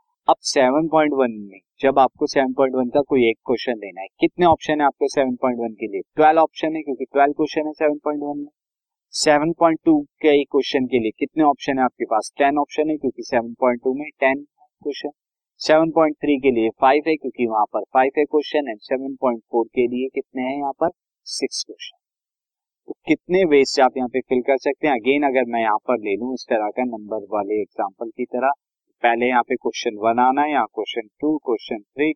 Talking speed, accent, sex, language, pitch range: 80 wpm, native, male, Hindi, 125-150 Hz